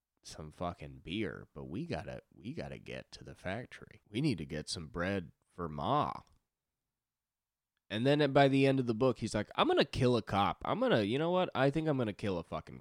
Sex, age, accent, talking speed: male, 20-39, American, 220 wpm